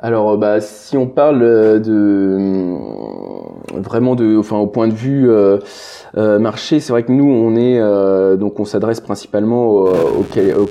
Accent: French